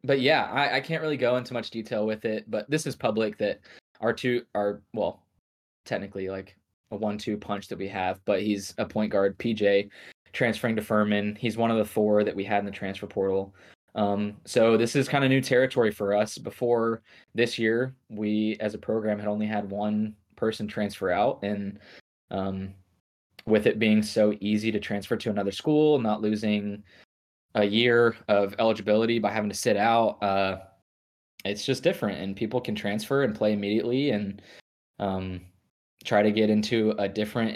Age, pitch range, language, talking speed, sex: 20-39, 100-115 Hz, English, 185 wpm, male